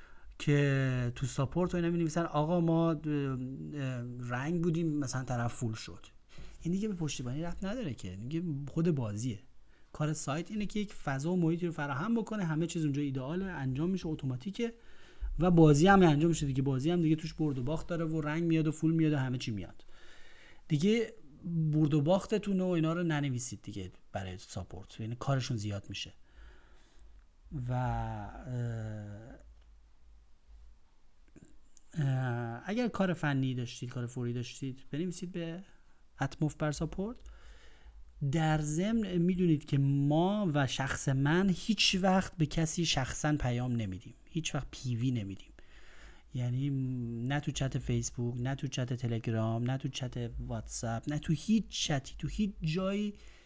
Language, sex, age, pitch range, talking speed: Persian, male, 30-49, 125-170 Hz, 150 wpm